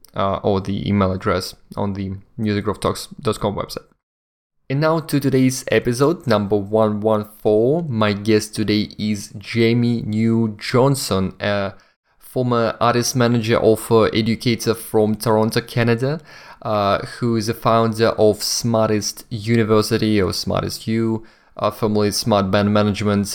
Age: 20-39